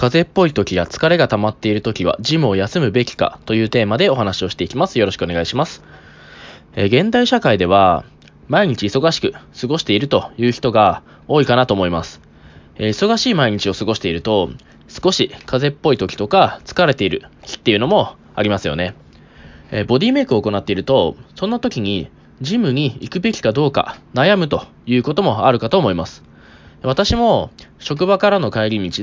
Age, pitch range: 20-39, 100-160 Hz